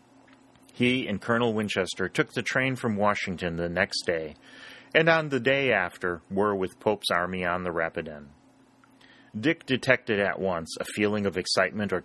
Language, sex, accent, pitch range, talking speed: English, male, American, 90-120 Hz, 165 wpm